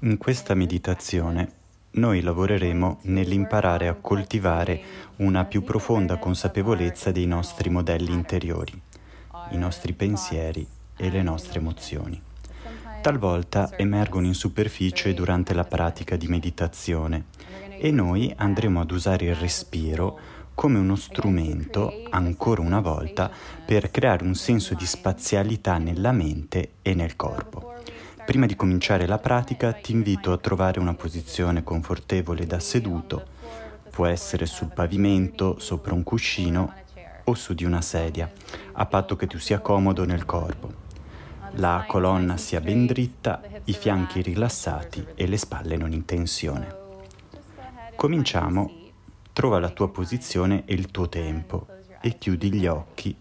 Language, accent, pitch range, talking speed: Italian, native, 85-100 Hz, 130 wpm